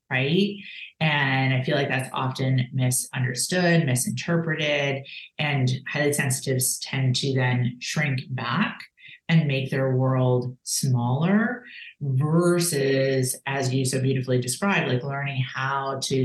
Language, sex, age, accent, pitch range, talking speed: English, female, 30-49, American, 125-145 Hz, 120 wpm